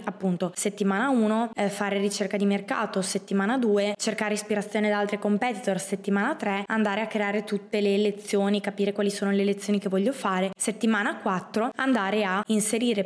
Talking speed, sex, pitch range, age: 165 wpm, female, 195-220 Hz, 20-39